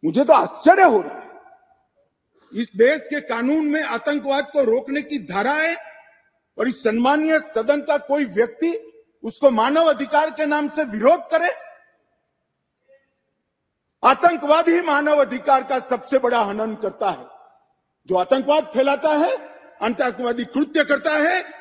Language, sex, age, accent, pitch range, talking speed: Hindi, male, 50-69, native, 240-315 Hz, 135 wpm